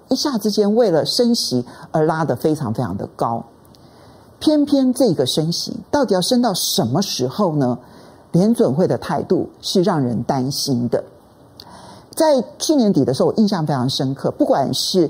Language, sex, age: Chinese, male, 50-69